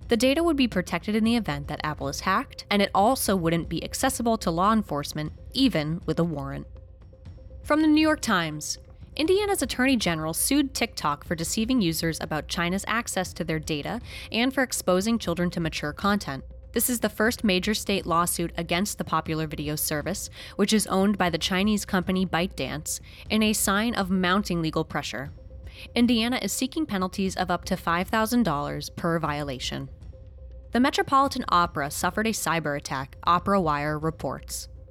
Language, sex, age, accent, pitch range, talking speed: English, female, 20-39, American, 155-220 Hz, 170 wpm